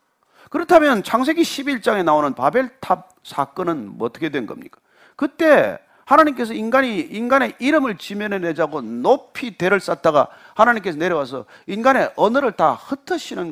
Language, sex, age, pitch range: Korean, male, 40-59, 210-310 Hz